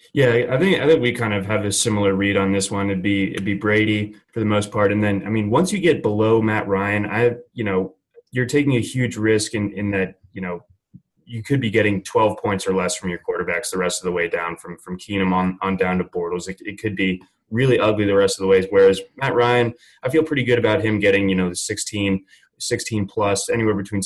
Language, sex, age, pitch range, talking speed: English, male, 20-39, 95-110 Hz, 250 wpm